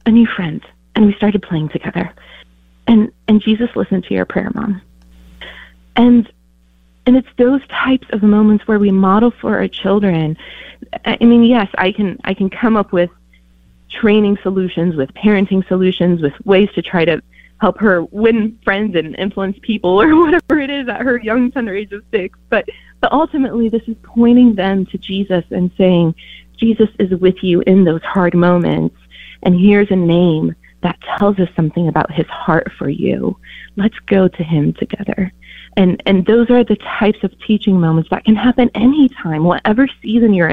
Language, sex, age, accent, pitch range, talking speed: English, female, 30-49, American, 175-220 Hz, 180 wpm